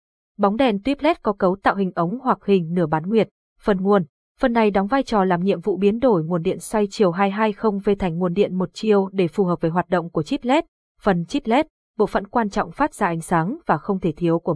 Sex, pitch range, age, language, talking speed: female, 180-240 Hz, 20-39, Vietnamese, 250 wpm